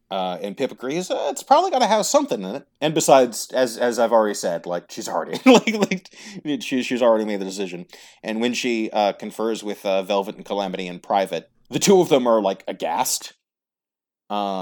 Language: English